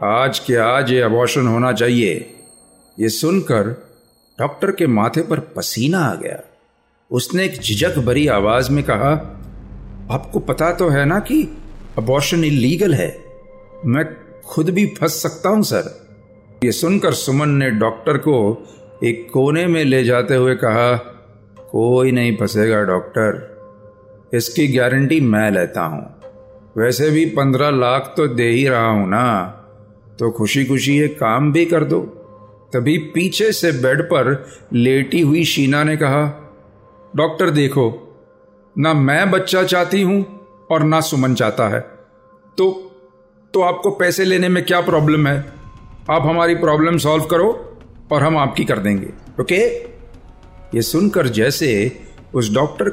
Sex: male